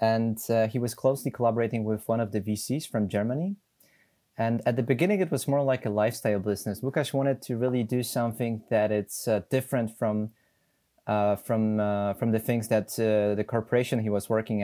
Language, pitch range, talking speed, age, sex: English, 105-120 Hz, 195 wpm, 20-39, male